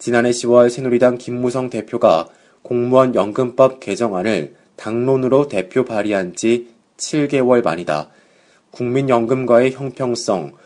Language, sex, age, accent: Korean, male, 20-39, native